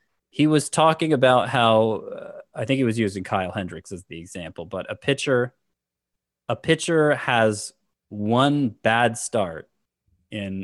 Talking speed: 145 wpm